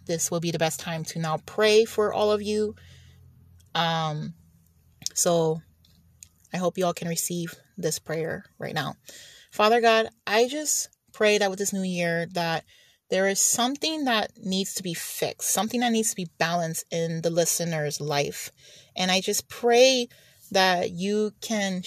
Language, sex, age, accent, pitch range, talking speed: English, female, 30-49, American, 165-210 Hz, 165 wpm